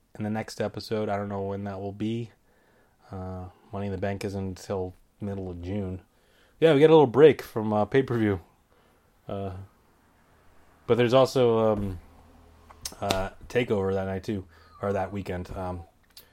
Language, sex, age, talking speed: English, male, 20-39, 160 wpm